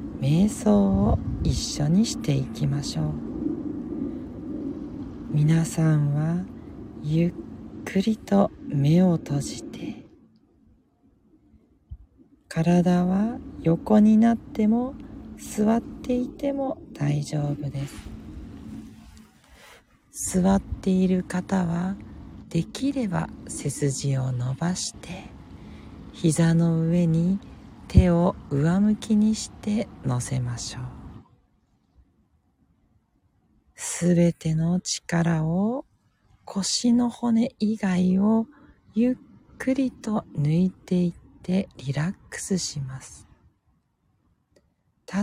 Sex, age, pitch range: female, 40-59, 155-225 Hz